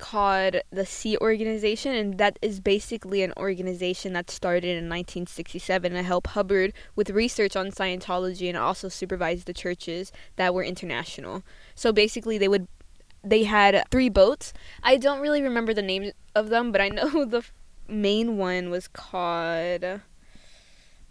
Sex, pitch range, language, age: female, 185-220 Hz, English, 20-39